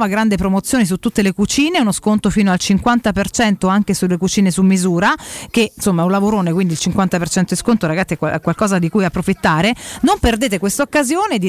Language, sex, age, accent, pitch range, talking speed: Italian, female, 40-59, native, 190-255 Hz, 195 wpm